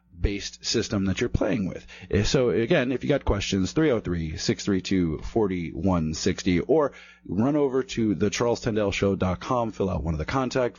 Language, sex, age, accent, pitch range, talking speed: English, male, 30-49, American, 90-115 Hz, 145 wpm